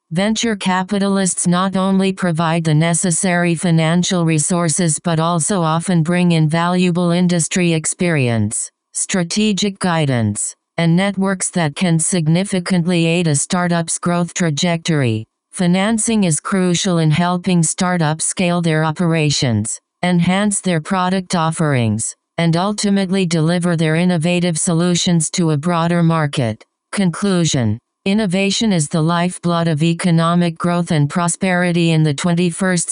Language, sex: English, female